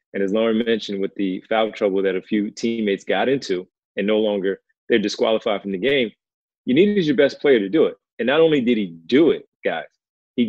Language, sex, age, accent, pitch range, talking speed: English, male, 30-49, American, 100-120 Hz, 225 wpm